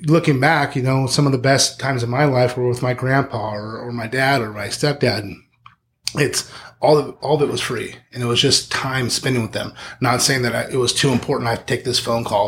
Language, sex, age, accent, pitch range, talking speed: English, male, 30-49, American, 115-135 Hz, 250 wpm